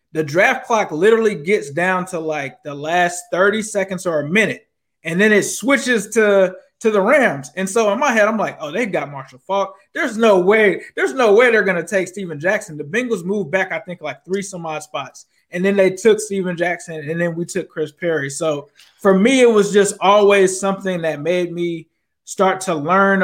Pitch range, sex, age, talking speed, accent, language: 160-195 Hz, male, 20-39, 215 wpm, American, English